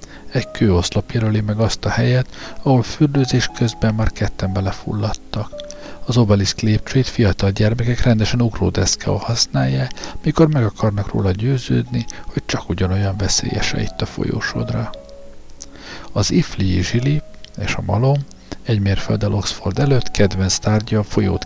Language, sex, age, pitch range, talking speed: Hungarian, male, 50-69, 95-120 Hz, 125 wpm